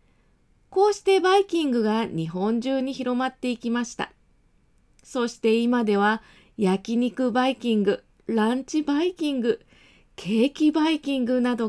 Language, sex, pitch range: Japanese, female, 200-270 Hz